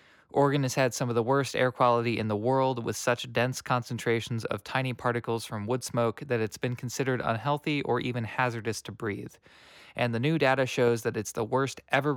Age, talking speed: 20-39, 205 wpm